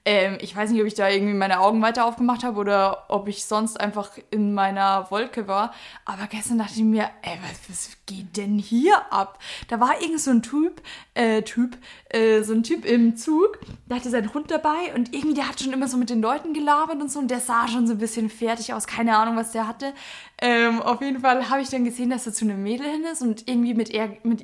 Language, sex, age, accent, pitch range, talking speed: German, female, 20-39, German, 220-285 Hz, 245 wpm